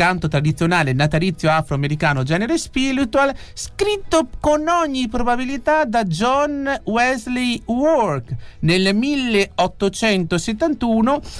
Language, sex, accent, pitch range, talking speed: Italian, male, native, 155-255 Hz, 85 wpm